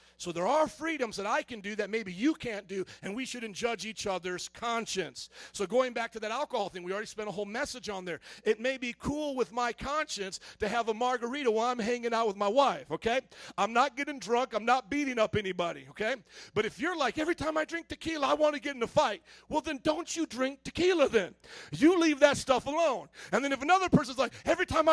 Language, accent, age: English, American, 40-59